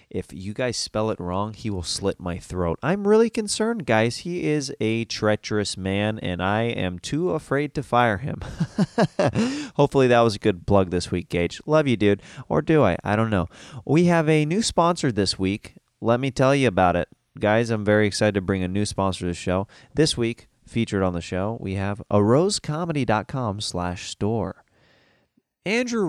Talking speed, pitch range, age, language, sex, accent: 190 wpm, 95-150 Hz, 30-49, English, male, American